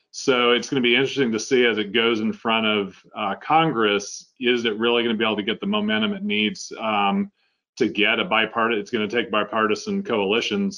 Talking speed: 225 wpm